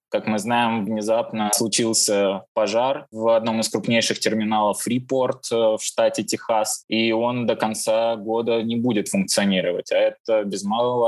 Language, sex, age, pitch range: Russian, male, 20-39, 105-130 Hz